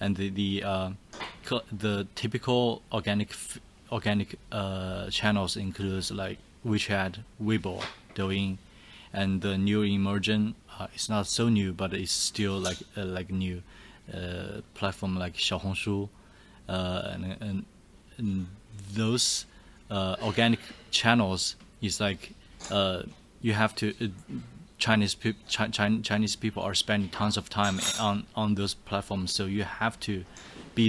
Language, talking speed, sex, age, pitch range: English, 130 wpm, male, 20-39, 95-105 Hz